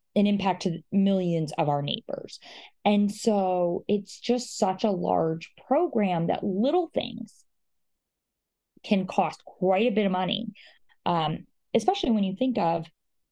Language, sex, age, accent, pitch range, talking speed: English, female, 20-39, American, 170-220 Hz, 140 wpm